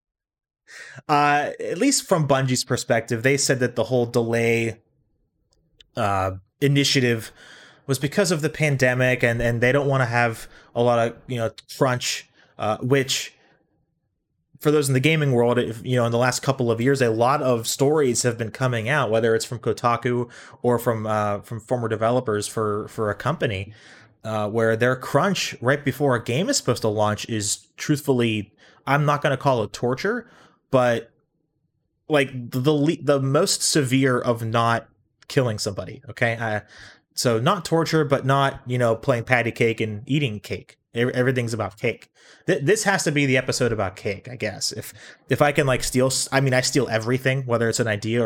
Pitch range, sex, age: 115-140 Hz, male, 20-39